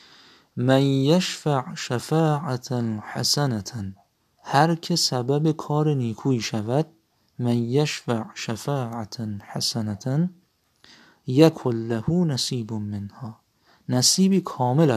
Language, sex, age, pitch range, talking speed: Persian, male, 50-69, 115-155 Hz, 80 wpm